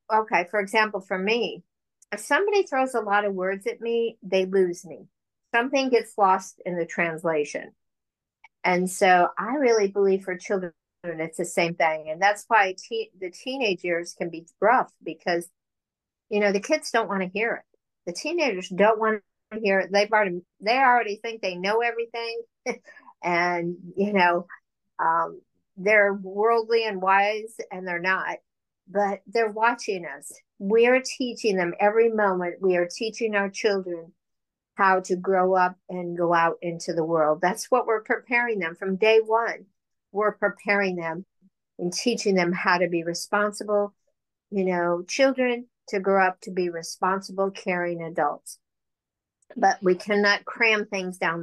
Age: 50-69